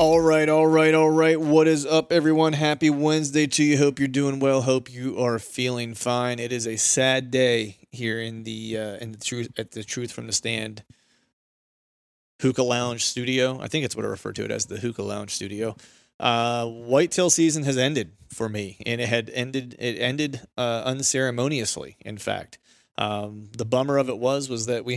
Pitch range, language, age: 110-130 Hz, English, 30-49